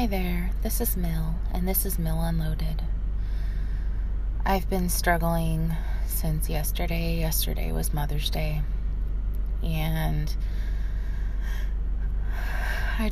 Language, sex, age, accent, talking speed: English, female, 20-39, American, 95 wpm